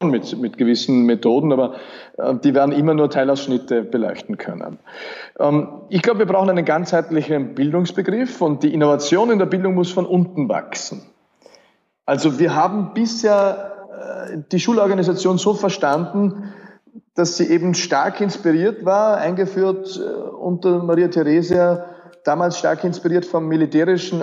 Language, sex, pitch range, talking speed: German, male, 140-180 Hz, 140 wpm